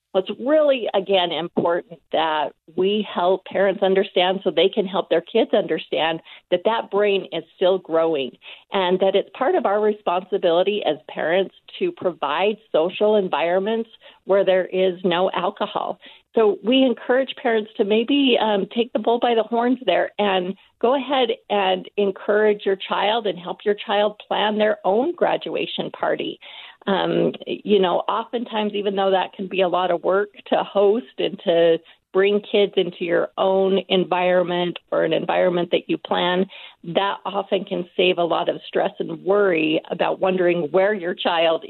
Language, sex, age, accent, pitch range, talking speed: English, female, 40-59, American, 180-215 Hz, 165 wpm